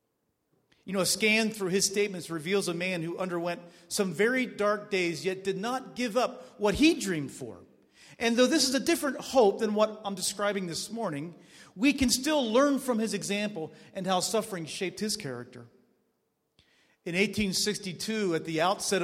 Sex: male